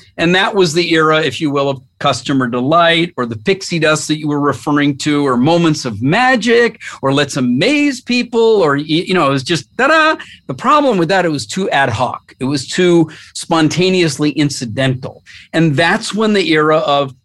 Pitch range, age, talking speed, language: 135-165 Hz, 50-69, 190 wpm, English